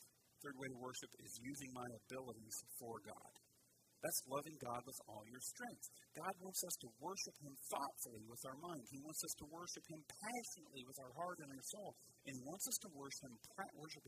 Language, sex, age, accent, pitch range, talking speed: English, male, 50-69, American, 130-185 Hz, 200 wpm